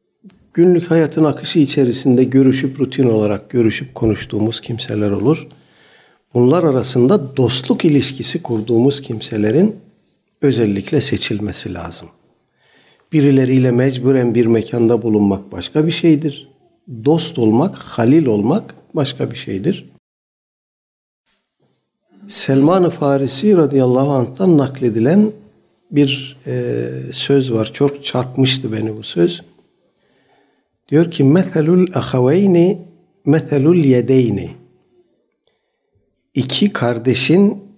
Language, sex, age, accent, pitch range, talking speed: Turkish, male, 60-79, native, 115-165 Hz, 90 wpm